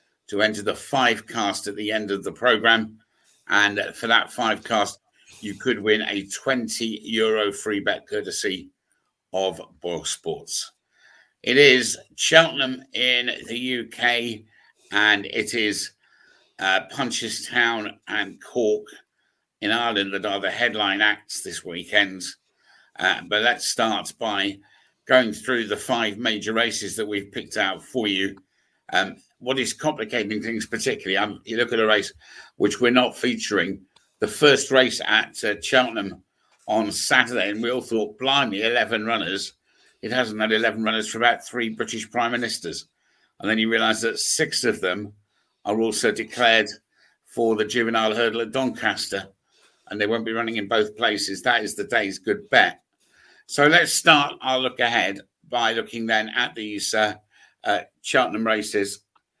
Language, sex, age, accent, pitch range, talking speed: English, male, 50-69, British, 105-120 Hz, 160 wpm